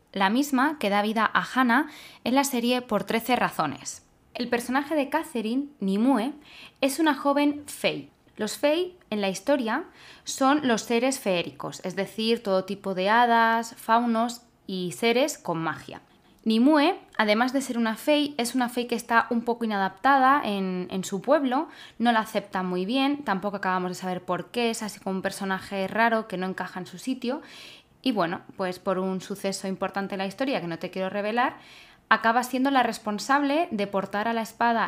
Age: 20-39